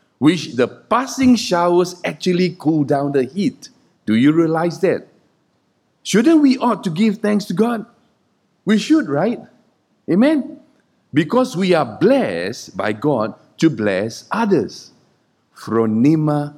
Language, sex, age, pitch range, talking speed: English, male, 50-69, 140-220 Hz, 125 wpm